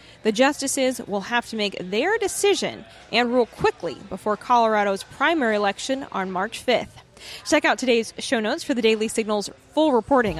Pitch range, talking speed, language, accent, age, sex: 215-285 Hz, 165 wpm, English, American, 20-39, female